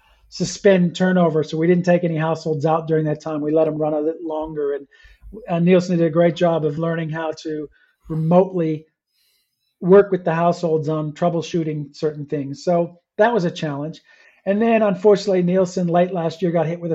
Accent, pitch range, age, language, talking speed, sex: American, 160-185 Hz, 40-59, English, 190 wpm, male